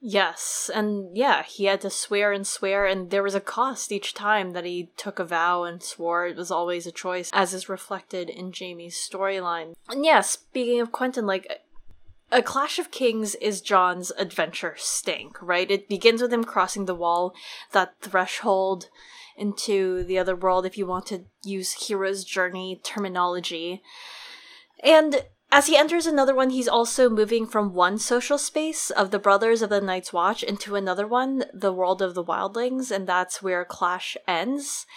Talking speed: 175 wpm